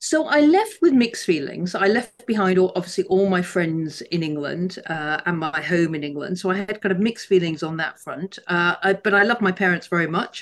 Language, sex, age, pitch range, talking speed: English, female, 50-69, 165-200 Hz, 225 wpm